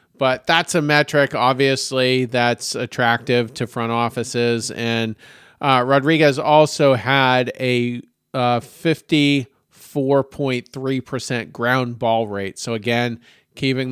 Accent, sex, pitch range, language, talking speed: American, male, 115-135 Hz, English, 105 wpm